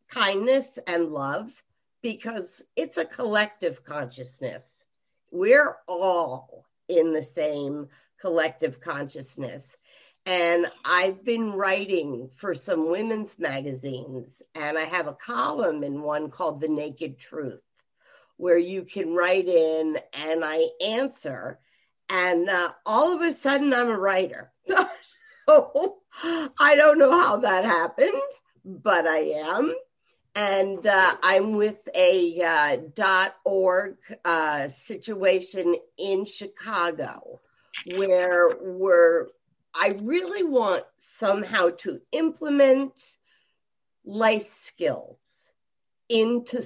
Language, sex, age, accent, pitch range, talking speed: English, female, 50-69, American, 170-260 Hz, 105 wpm